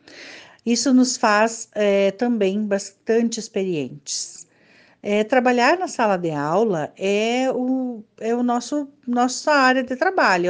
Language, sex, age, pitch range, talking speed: Portuguese, female, 50-69, 180-235 Hz, 125 wpm